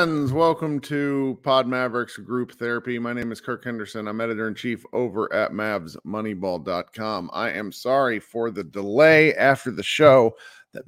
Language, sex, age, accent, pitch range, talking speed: English, male, 40-59, American, 110-140 Hz, 145 wpm